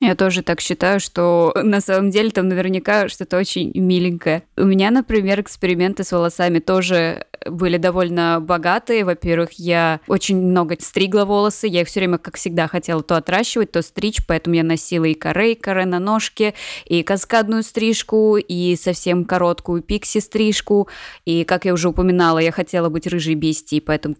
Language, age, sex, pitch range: Russian, 20-39, female, 170-195 Hz